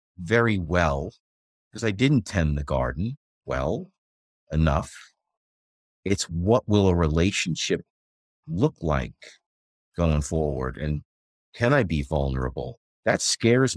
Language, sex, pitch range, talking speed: English, male, 75-110 Hz, 115 wpm